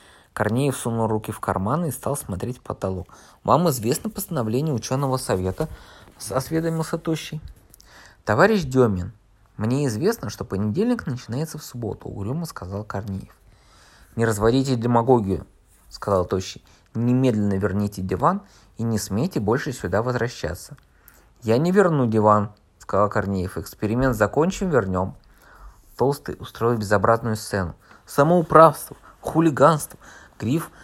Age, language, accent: 20-39, Russian, native